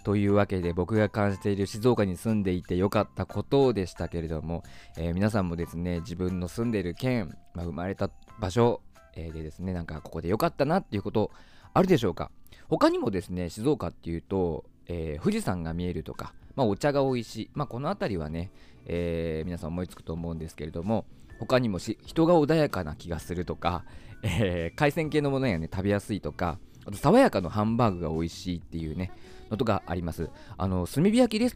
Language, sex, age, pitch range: Japanese, male, 20-39, 85-110 Hz